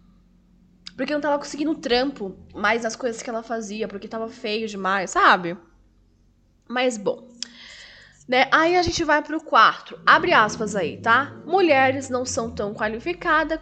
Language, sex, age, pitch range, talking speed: Portuguese, female, 10-29, 210-290 Hz, 150 wpm